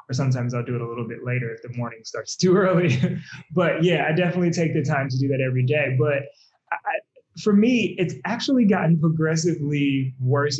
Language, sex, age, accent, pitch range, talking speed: English, male, 20-39, American, 130-160 Hz, 205 wpm